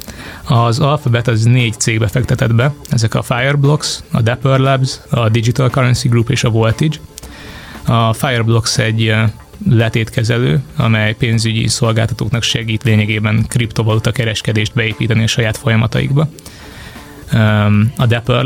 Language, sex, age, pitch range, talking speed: Hungarian, male, 20-39, 110-125 Hz, 120 wpm